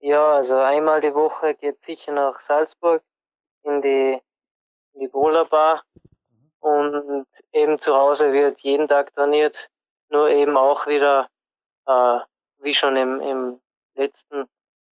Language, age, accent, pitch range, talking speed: German, 20-39, German, 135-155 Hz, 130 wpm